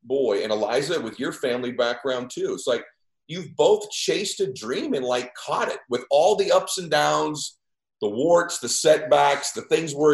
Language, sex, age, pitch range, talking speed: English, male, 40-59, 130-215 Hz, 190 wpm